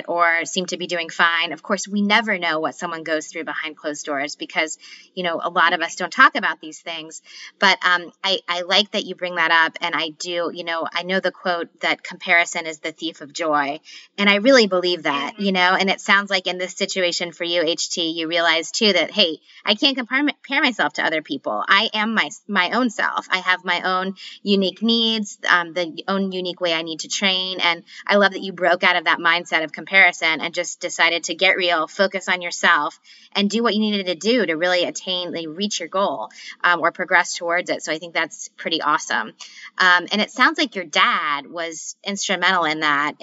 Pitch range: 165-195 Hz